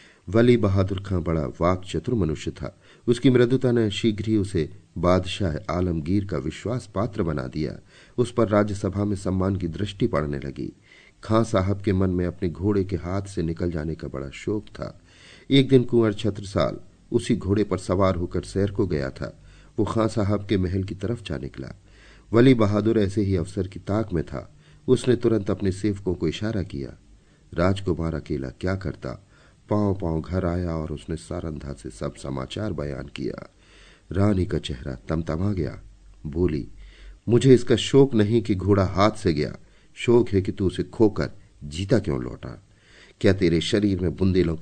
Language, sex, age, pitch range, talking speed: Hindi, male, 40-59, 85-105 Hz, 175 wpm